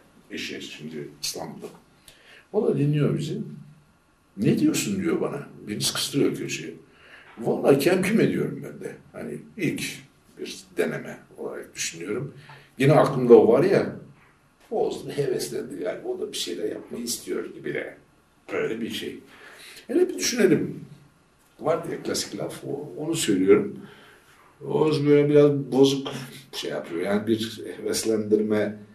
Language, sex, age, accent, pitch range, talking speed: Turkish, male, 60-79, native, 110-175 Hz, 130 wpm